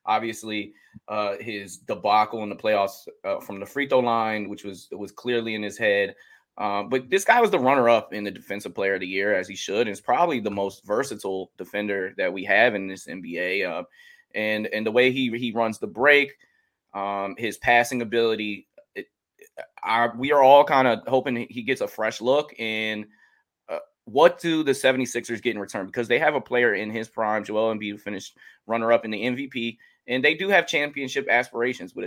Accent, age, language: American, 20-39, English